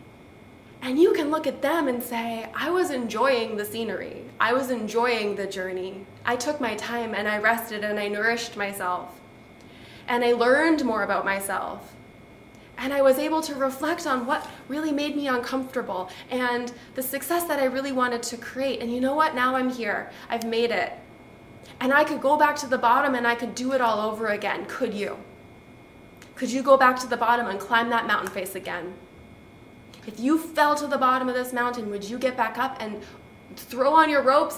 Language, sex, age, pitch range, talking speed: English, female, 20-39, 230-275 Hz, 200 wpm